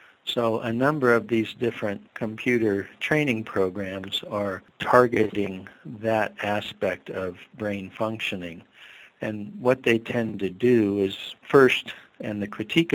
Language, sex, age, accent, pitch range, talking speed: English, male, 50-69, American, 100-115 Hz, 125 wpm